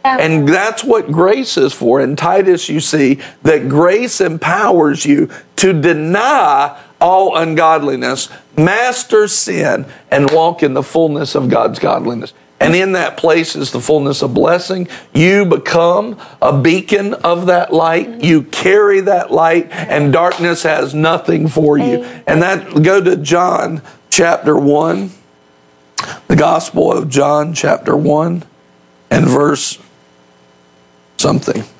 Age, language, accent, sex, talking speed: 50-69, English, American, male, 130 wpm